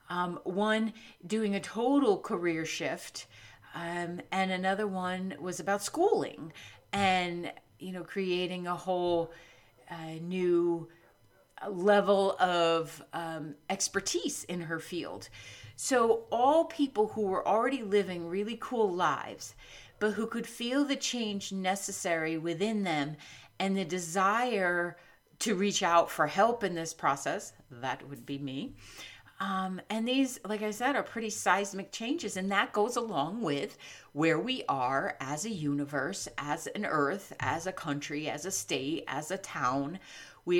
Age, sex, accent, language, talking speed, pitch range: 40-59, female, American, English, 145 wpm, 165-210 Hz